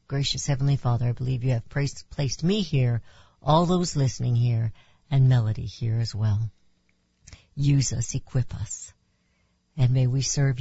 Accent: American